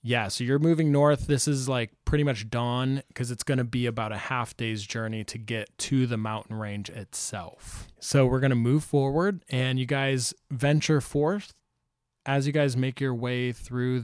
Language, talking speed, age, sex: English, 195 wpm, 20-39, male